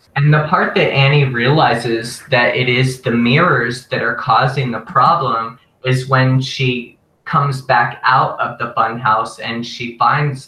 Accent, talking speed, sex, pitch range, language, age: American, 160 wpm, male, 120-145 Hz, English, 20-39